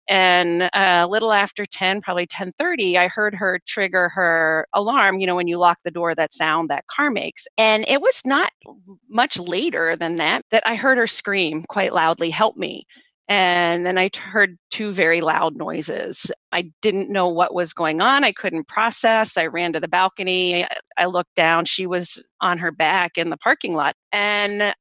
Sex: female